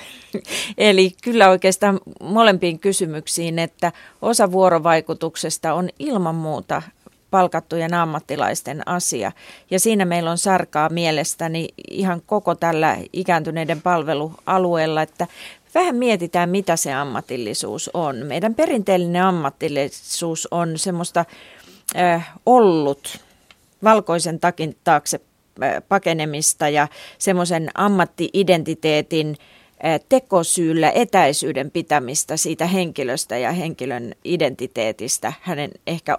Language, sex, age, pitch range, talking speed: Finnish, female, 30-49, 160-195 Hz, 90 wpm